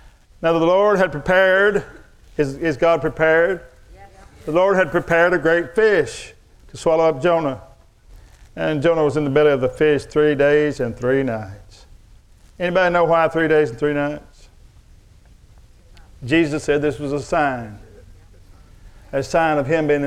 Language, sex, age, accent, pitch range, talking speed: English, male, 50-69, American, 110-160 Hz, 155 wpm